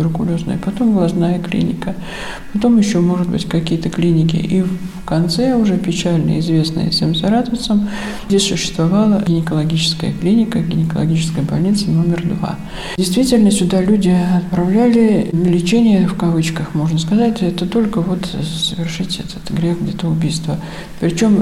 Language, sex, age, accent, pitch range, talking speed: Russian, male, 50-69, native, 170-200 Hz, 120 wpm